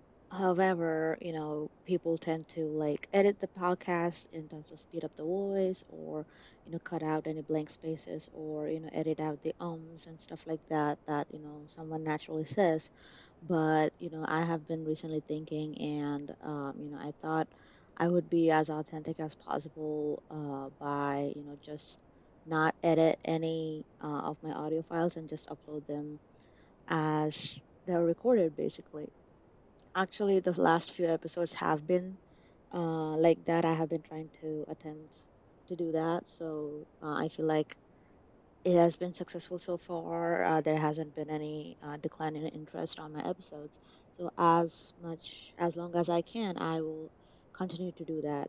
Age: 20-39